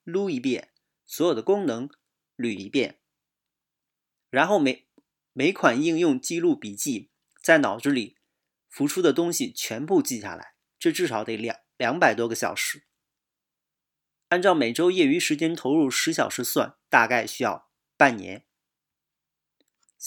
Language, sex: Chinese, male